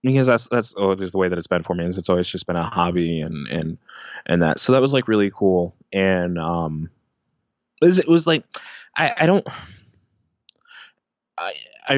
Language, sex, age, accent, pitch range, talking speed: English, male, 20-39, American, 90-110 Hz, 195 wpm